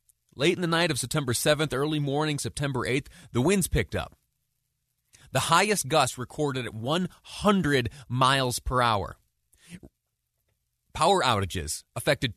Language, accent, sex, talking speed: English, American, male, 130 wpm